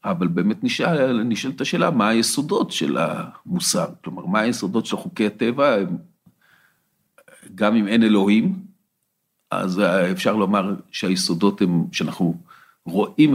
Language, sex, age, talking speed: Hebrew, male, 50-69, 120 wpm